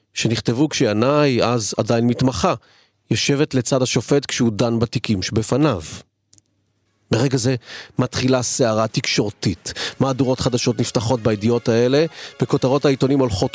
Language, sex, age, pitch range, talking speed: Hebrew, male, 40-59, 105-130 Hz, 110 wpm